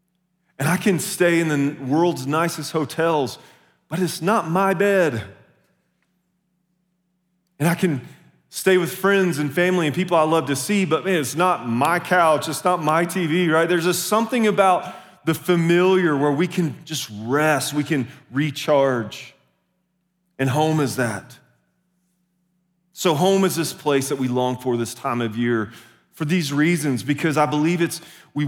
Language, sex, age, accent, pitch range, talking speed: English, male, 30-49, American, 140-180 Hz, 165 wpm